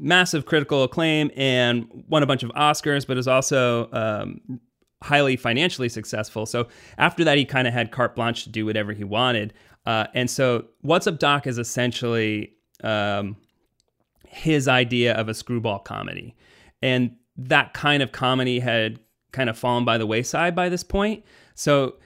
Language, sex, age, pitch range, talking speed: English, male, 30-49, 110-135 Hz, 165 wpm